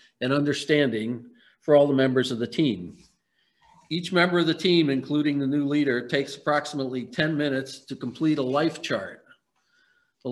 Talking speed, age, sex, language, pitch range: 165 wpm, 50-69, male, English, 130-160 Hz